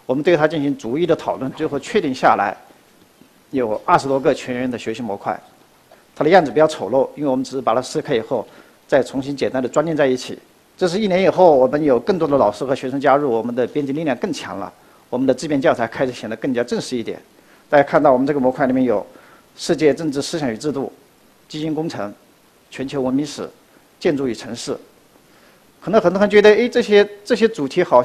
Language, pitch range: Chinese, 130-180 Hz